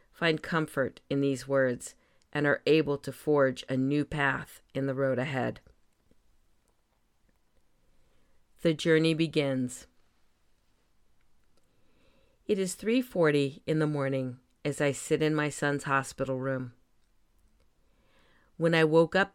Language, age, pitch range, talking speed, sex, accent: English, 40-59, 135-160 Hz, 120 wpm, female, American